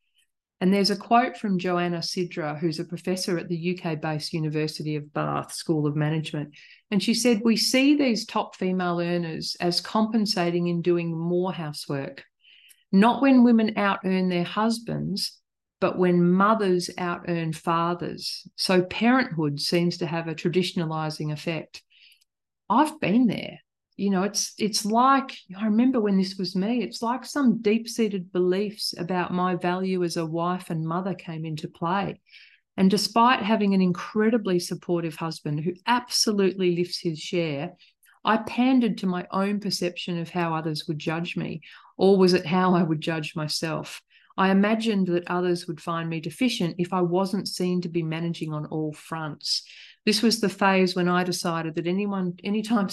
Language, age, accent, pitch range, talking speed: English, 40-59, Australian, 165-205 Hz, 160 wpm